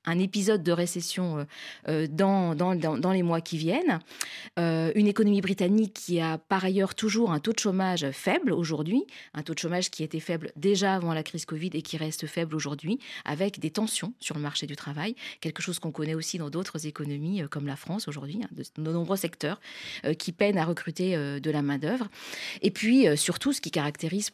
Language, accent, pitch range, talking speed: French, French, 155-210 Hz, 195 wpm